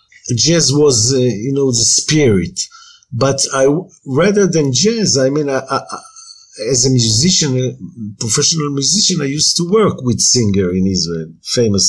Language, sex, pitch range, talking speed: English, male, 95-130 Hz, 160 wpm